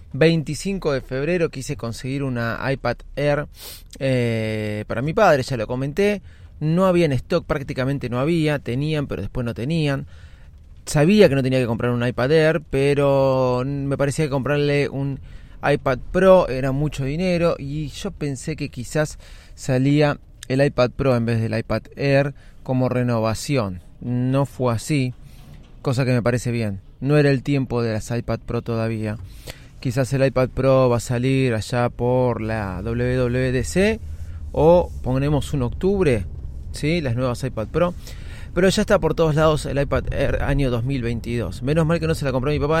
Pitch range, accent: 115-150 Hz, Argentinian